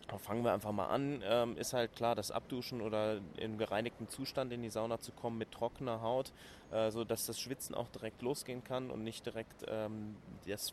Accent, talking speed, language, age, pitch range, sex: German, 185 wpm, German, 20-39, 105-120 Hz, male